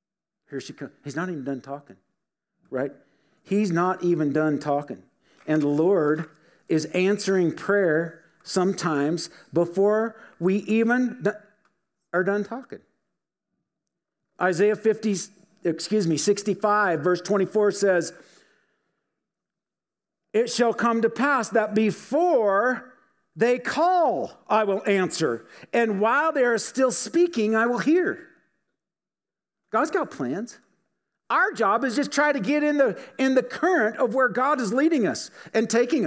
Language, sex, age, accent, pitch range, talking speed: English, male, 50-69, American, 180-250 Hz, 130 wpm